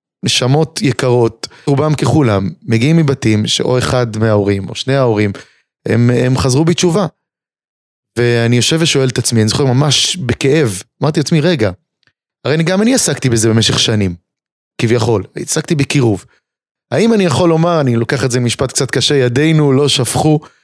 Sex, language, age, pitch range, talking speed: male, Hebrew, 30-49, 115-150 Hz, 155 wpm